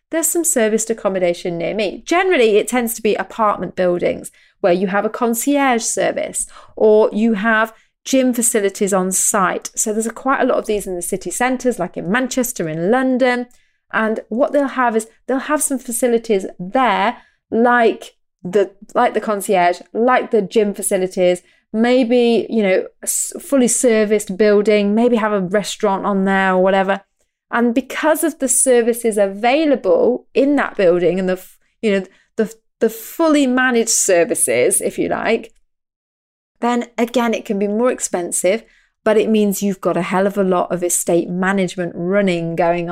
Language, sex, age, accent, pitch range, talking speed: English, female, 30-49, British, 190-245 Hz, 165 wpm